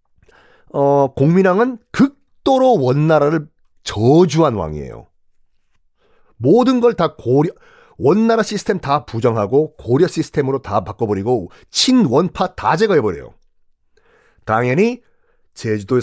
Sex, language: male, Korean